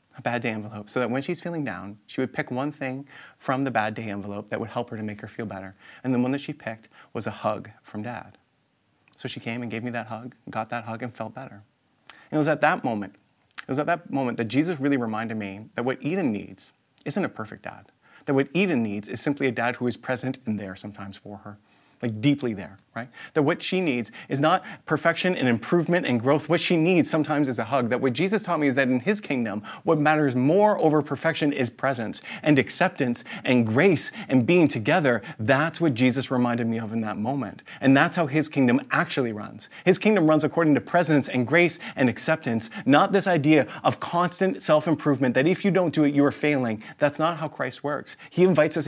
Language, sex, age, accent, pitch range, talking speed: English, male, 30-49, American, 120-155 Hz, 230 wpm